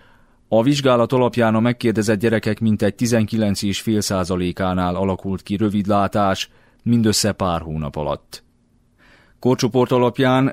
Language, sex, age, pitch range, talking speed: Hungarian, male, 30-49, 95-115 Hz, 95 wpm